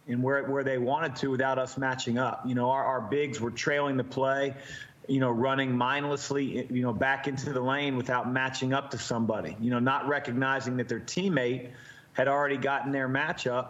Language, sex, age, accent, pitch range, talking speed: English, male, 40-59, American, 125-140 Hz, 200 wpm